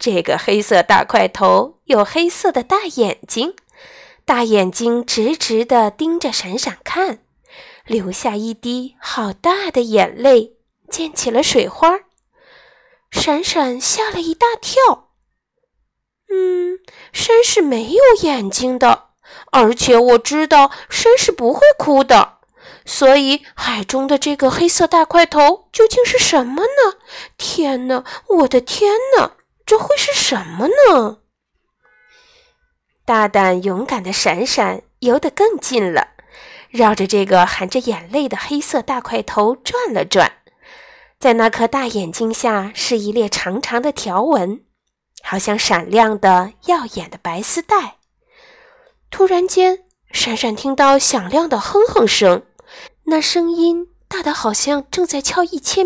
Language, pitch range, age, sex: Chinese, 235-375 Hz, 20-39, female